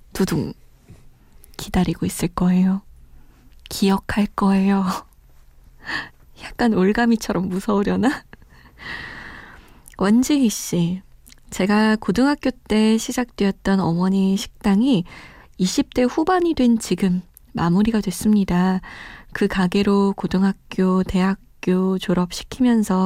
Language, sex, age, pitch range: Korean, female, 20-39, 185-220 Hz